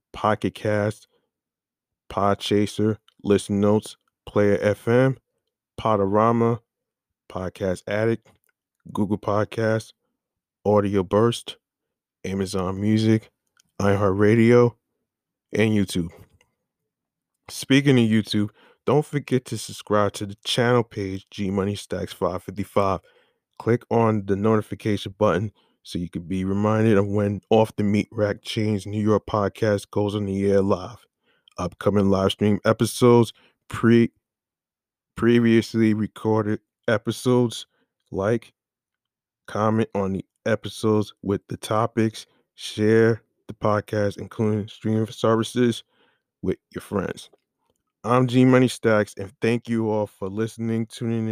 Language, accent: English, American